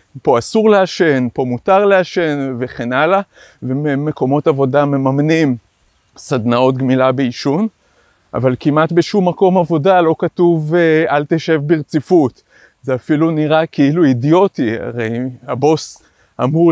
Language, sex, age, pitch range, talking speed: Hebrew, male, 30-49, 130-170 Hz, 115 wpm